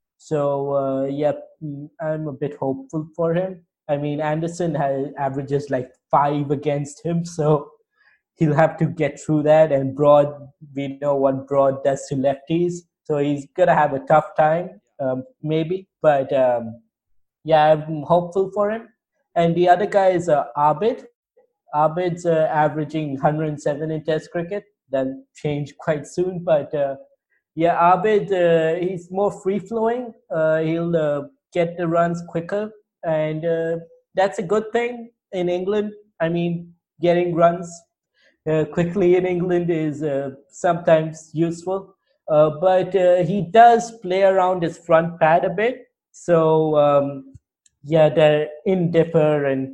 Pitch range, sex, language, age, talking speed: 145-180 Hz, male, English, 20-39, 145 wpm